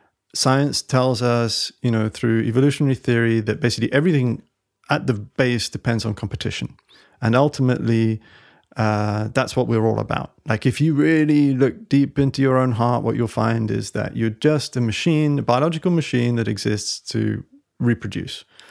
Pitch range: 110-140 Hz